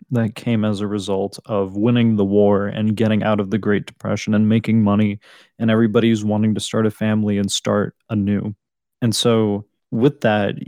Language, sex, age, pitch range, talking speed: English, male, 20-39, 105-120 Hz, 185 wpm